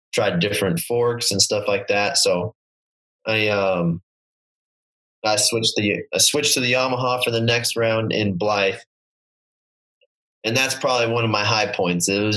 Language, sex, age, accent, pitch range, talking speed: English, male, 20-39, American, 105-120 Hz, 165 wpm